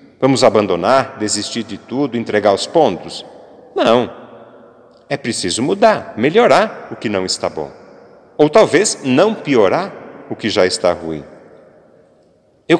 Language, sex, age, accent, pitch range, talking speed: Portuguese, male, 40-59, Brazilian, 115-180 Hz, 130 wpm